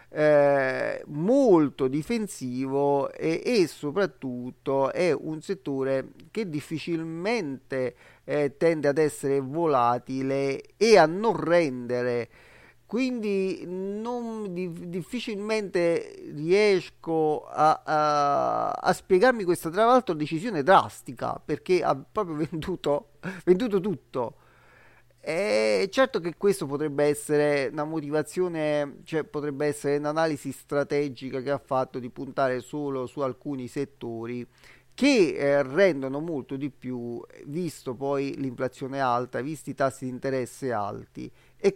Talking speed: 110 wpm